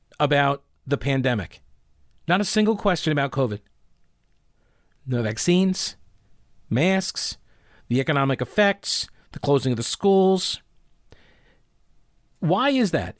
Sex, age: male, 40-59